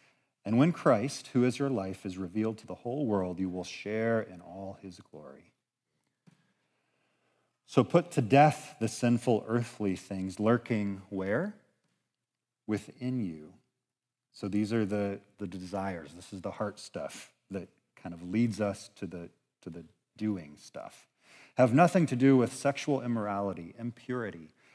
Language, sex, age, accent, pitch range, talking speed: English, male, 40-59, American, 95-120 Hz, 150 wpm